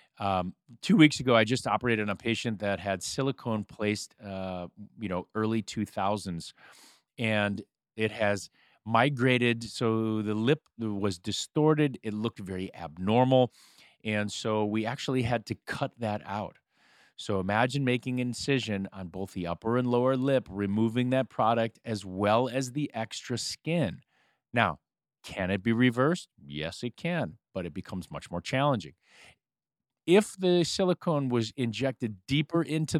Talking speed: 150 wpm